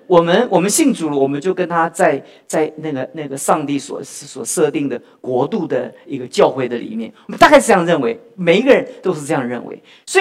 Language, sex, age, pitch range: Chinese, male, 50-69, 190-305 Hz